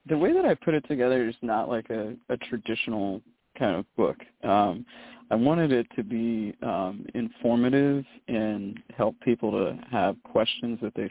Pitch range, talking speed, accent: 110-120 Hz, 175 wpm, American